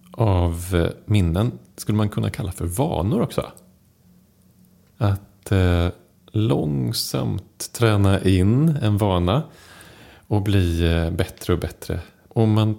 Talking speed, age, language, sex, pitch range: 105 wpm, 30-49, Swedish, male, 90-120 Hz